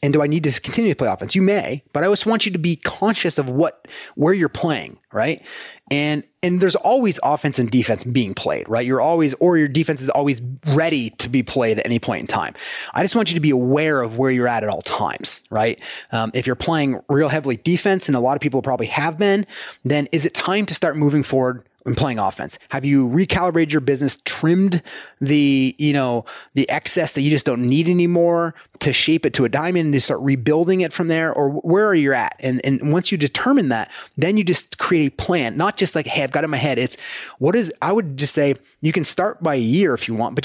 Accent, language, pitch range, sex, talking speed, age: American, English, 130-175 Hz, male, 245 wpm, 30-49